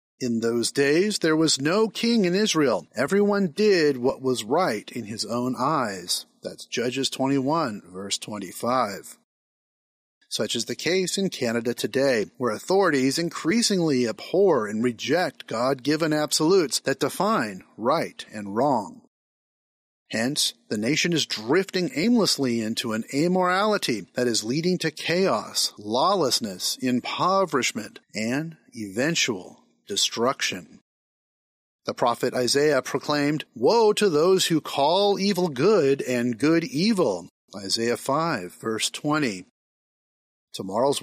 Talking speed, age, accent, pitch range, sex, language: 120 wpm, 40-59, American, 125-190 Hz, male, English